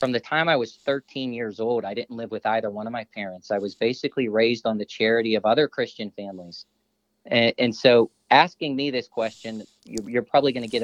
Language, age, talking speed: English, 40-59, 225 wpm